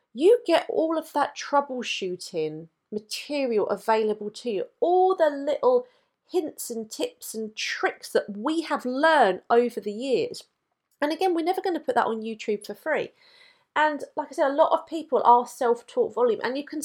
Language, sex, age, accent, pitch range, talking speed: English, female, 30-49, British, 215-320 Hz, 180 wpm